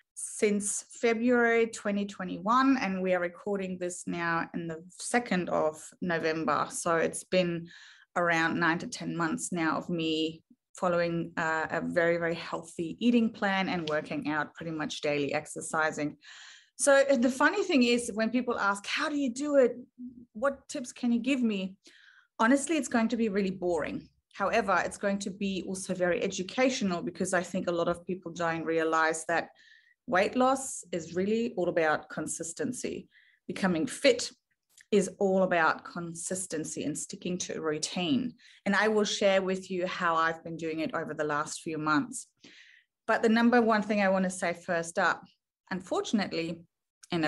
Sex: female